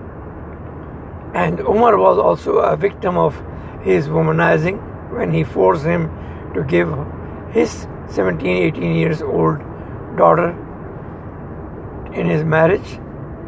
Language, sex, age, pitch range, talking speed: English, male, 60-79, 80-105 Hz, 100 wpm